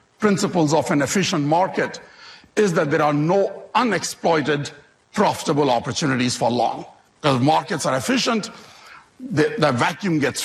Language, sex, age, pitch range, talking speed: English, male, 60-79, 145-180 Hz, 130 wpm